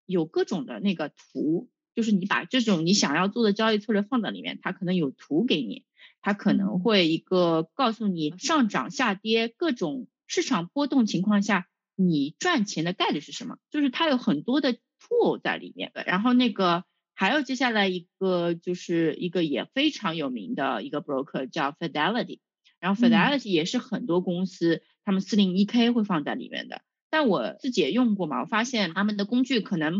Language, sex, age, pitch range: Chinese, female, 30-49, 180-230 Hz